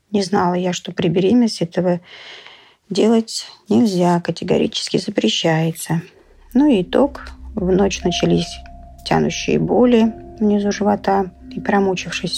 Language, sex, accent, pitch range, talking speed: Russian, female, native, 165-200 Hz, 110 wpm